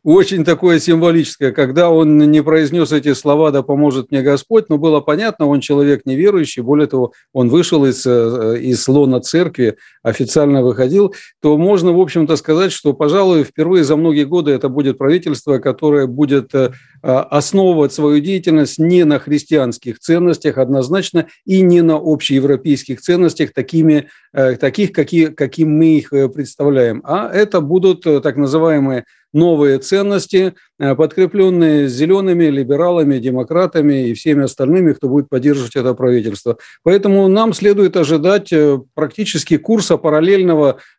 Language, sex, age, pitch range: Russian, male, 50-69, 140-175 Hz